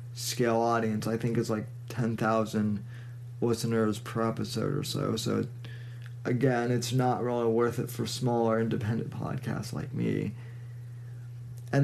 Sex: male